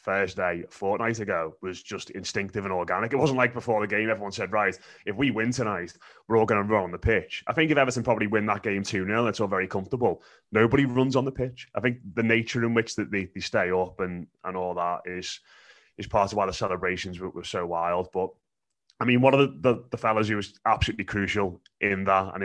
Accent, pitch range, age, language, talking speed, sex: British, 95-115 Hz, 20-39, English, 240 wpm, male